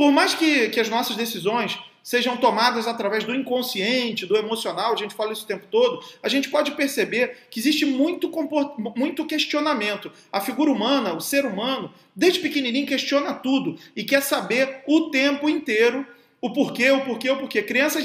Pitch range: 225-295 Hz